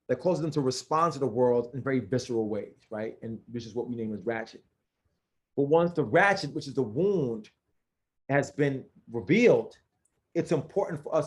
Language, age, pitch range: English, 30-49, 125-150 Hz